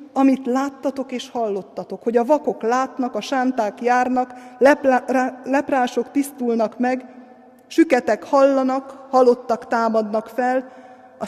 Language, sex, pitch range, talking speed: Hungarian, female, 200-260 Hz, 105 wpm